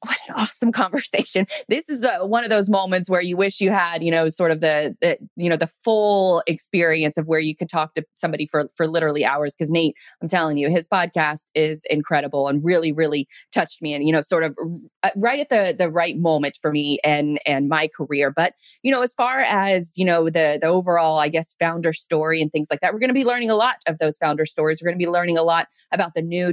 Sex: female